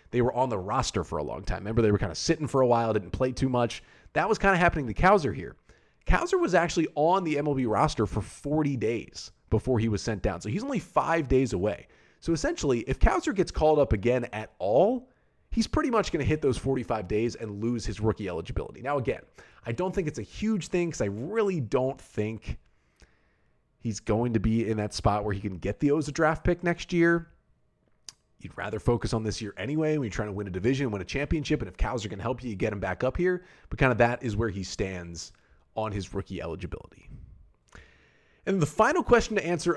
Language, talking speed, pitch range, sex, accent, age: English, 235 wpm, 105-155 Hz, male, American, 30-49